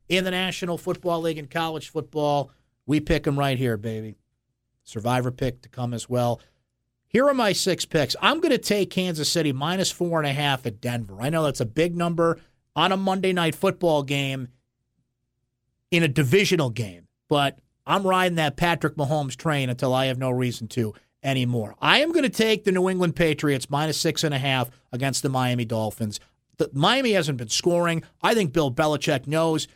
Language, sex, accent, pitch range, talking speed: English, male, American, 130-170 Hz, 190 wpm